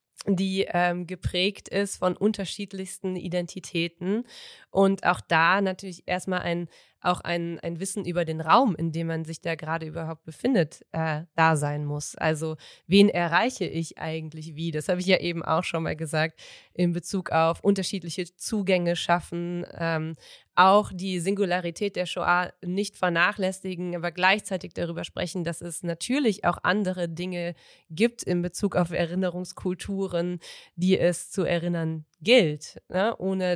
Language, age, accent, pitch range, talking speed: German, 20-39, German, 170-190 Hz, 150 wpm